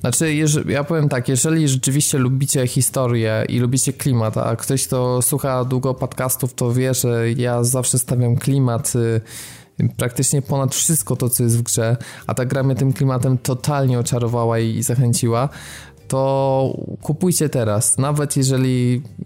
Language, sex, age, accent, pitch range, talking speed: Polish, male, 20-39, native, 115-135 Hz, 145 wpm